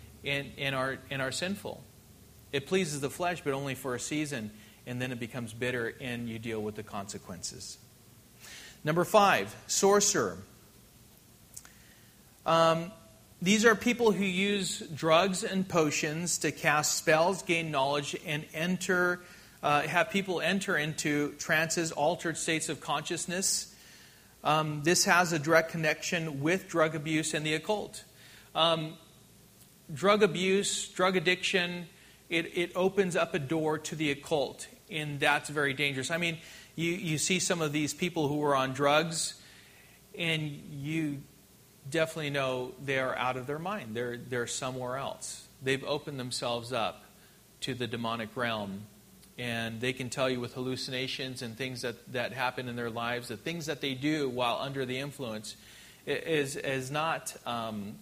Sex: male